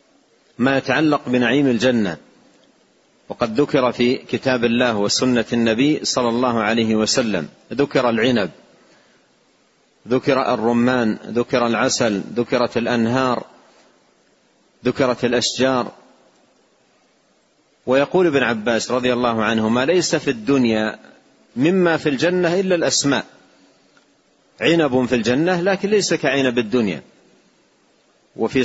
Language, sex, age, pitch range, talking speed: Arabic, male, 40-59, 120-165 Hz, 100 wpm